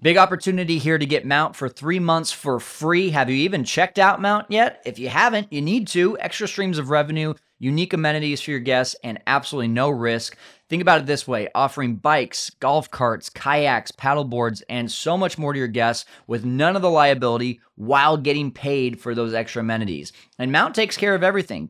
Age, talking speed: 20-39, 205 wpm